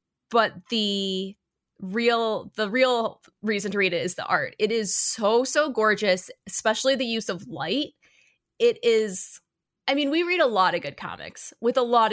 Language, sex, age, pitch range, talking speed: English, female, 20-39, 180-225 Hz, 180 wpm